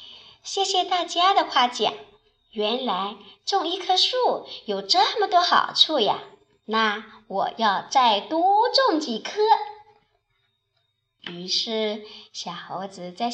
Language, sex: Chinese, male